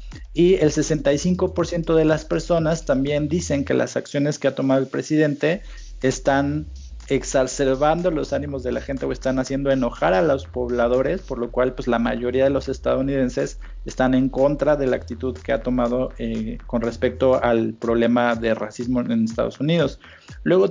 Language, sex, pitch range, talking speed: Spanish, male, 125-145 Hz, 170 wpm